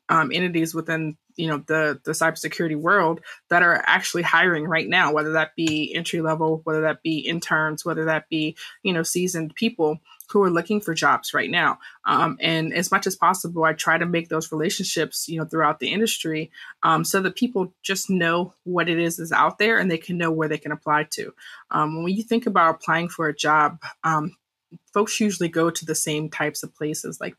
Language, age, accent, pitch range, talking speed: English, 20-39, American, 155-185 Hz, 210 wpm